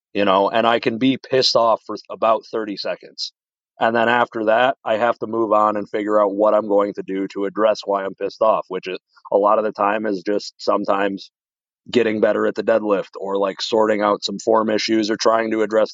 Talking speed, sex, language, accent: 230 wpm, male, English, American